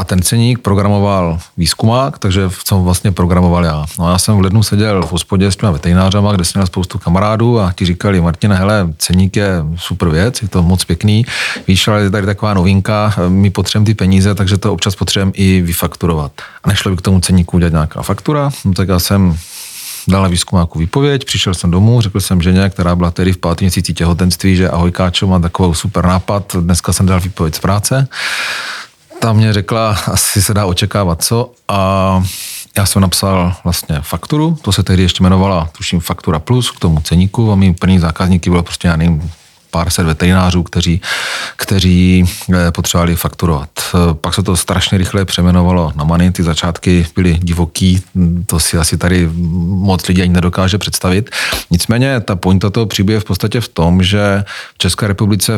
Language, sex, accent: Czech, male, native